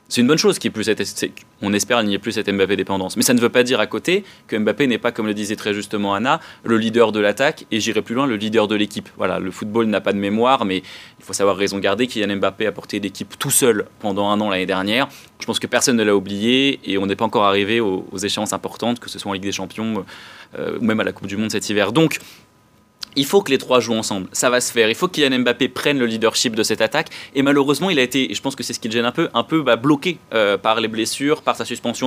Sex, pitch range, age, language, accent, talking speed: male, 100-125 Hz, 20-39, French, French, 290 wpm